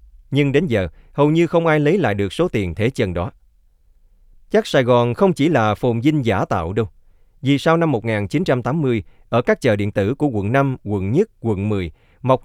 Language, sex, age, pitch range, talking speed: Vietnamese, male, 20-39, 95-140 Hz, 205 wpm